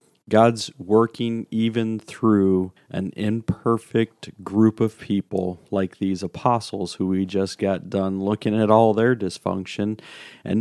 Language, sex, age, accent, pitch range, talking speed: English, male, 40-59, American, 95-110 Hz, 130 wpm